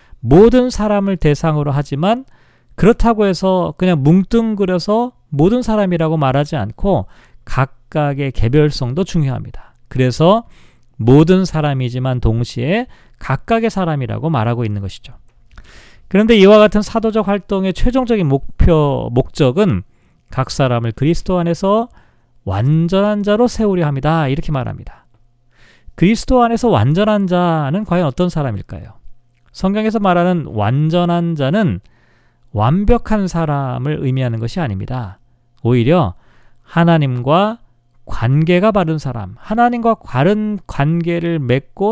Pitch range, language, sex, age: 130-200 Hz, Korean, male, 40-59